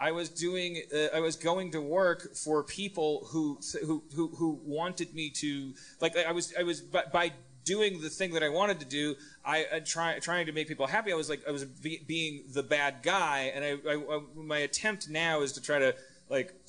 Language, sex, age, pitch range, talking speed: English, male, 30-49, 130-165 Hz, 225 wpm